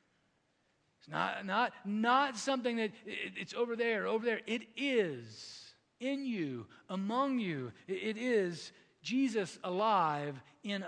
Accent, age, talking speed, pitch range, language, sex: American, 40-59, 115 wpm, 155-235 Hz, English, male